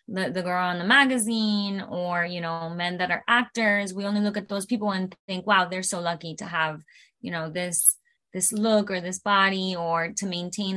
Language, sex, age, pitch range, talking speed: English, female, 20-39, 180-215 Hz, 210 wpm